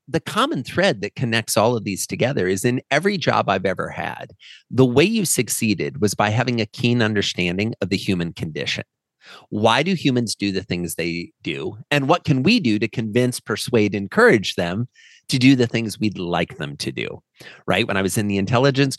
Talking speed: 200 wpm